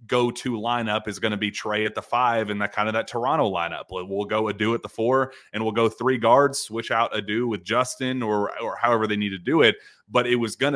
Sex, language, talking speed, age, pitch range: male, English, 255 wpm, 30-49, 100-120 Hz